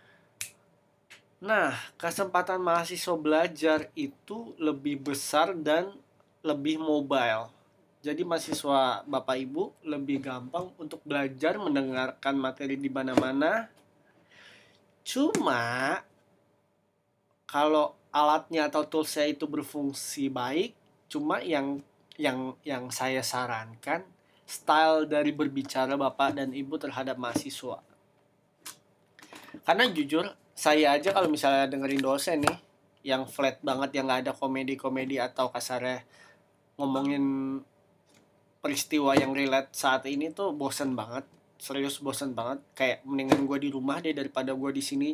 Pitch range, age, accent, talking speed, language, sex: 135-155 Hz, 20-39, native, 110 wpm, Indonesian, male